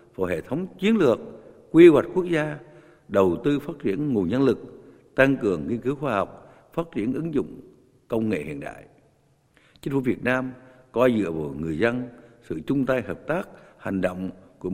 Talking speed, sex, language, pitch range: 185 wpm, male, Vietnamese, 115-140 Hz